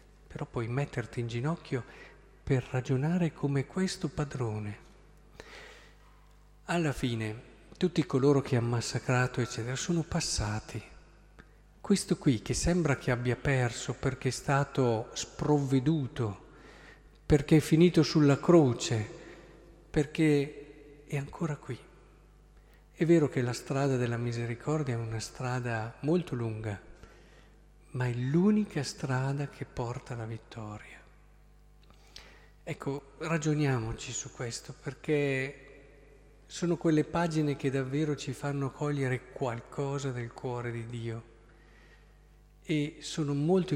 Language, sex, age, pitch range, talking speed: Italian, male, 50-69, 120-150 Hz, 110 wpm